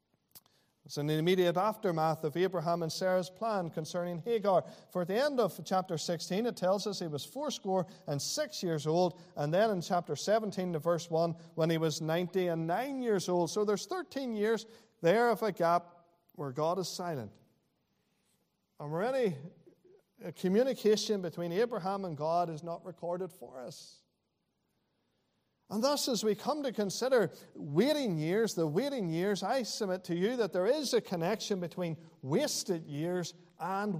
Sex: male